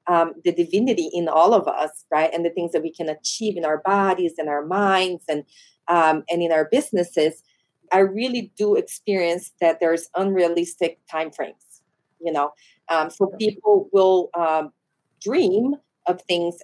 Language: English